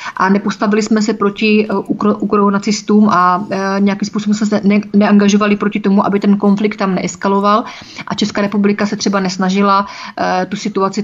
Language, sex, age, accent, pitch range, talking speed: Czech, female, 30-49, native, 195-215 Hz, 170 wpm